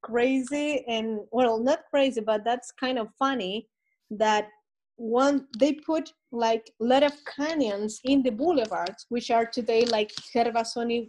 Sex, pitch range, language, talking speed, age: female, 215-270 Hz, English, 145 wpm, 20-39